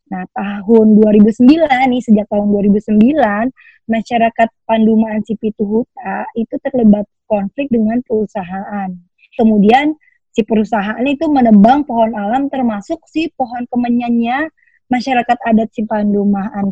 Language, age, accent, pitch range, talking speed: Indonesian, 20-39, native, 210-255 Hz, 110 wpm